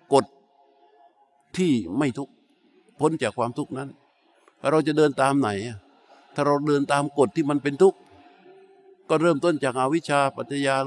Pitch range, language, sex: 125-160 Hz, Thai, male